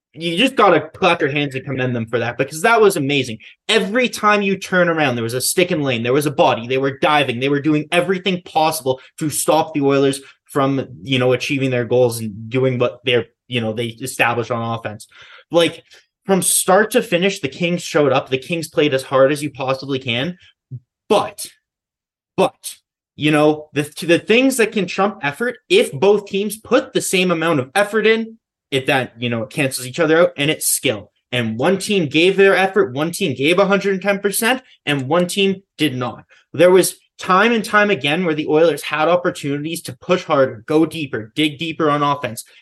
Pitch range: 135-195 Hz